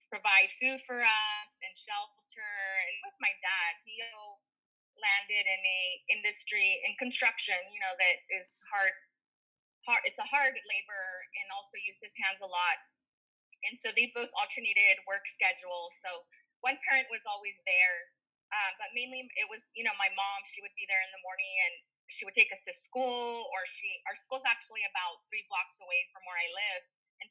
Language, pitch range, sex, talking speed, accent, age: English, 195-265 Hz, female, 185 wpm, American, 20-39